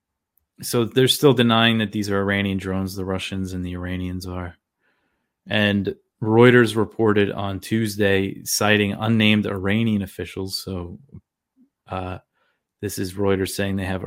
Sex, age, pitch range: male, 20-39, 95-110 Hz